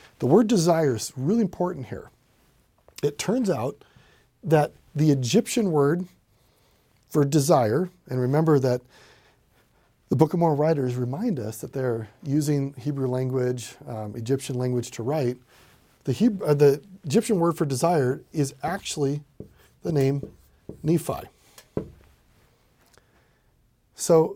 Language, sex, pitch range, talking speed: English, male, 125-170 Hz, 120 wpm